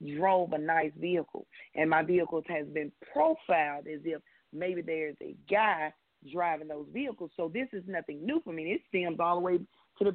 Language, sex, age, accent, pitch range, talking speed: English, female, 40-59, American, 160-205 Hz, 190 wpm